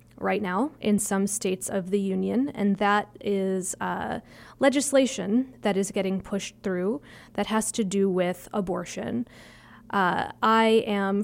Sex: female